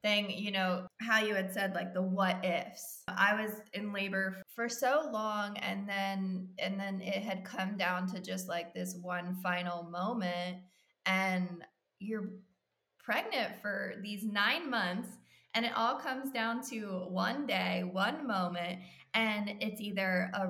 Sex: female